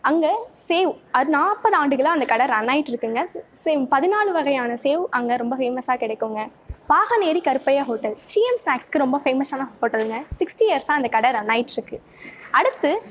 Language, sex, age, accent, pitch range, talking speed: Tamil, female, 20-39, native, 240-335 Hz, 140 wpm